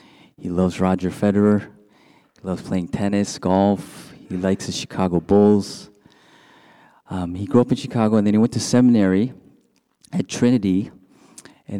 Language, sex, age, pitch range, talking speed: English, male, 30-49, 90-105 Hz, 145 wpm